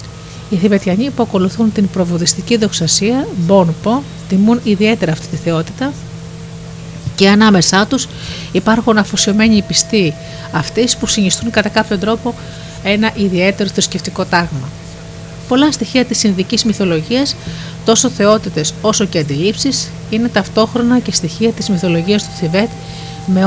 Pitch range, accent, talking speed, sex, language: 165-220 Hz, native, 125 wpm, female, Greek